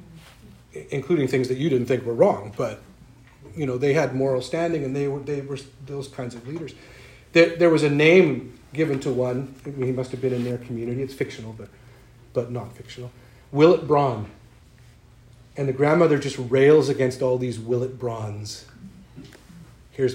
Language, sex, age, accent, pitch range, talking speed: English, male, 40-59, American, 120-150 Hz, 180 wpm